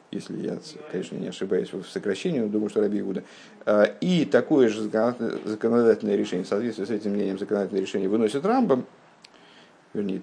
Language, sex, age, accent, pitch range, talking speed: Russian, male, 50-69, native, 110-180 Hz, 155 wpm